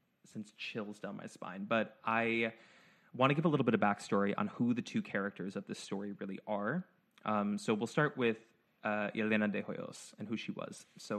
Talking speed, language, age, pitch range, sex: 210 wpm, English, 20-39, 105-150 Hz, male